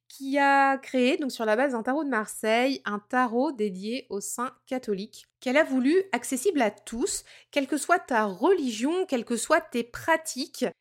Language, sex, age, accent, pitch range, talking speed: French, female, 20-39, French, 220-295 Hz, 185 wpm